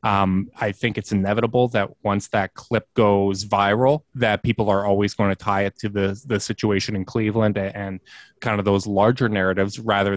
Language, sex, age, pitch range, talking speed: English, male, 20-39, 105-125 Hz, 190 wpm